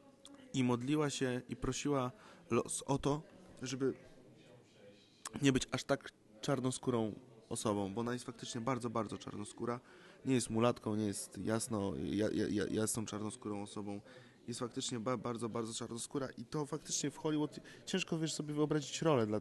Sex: male